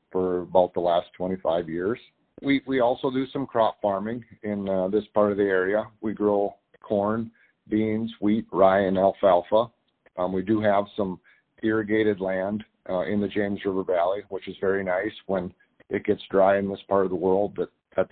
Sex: male